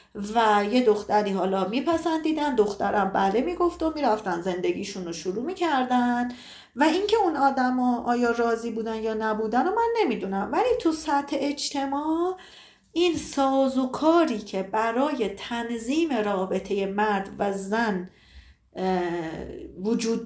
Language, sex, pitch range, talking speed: Persian, female, 205-275 Hz, 120 wpm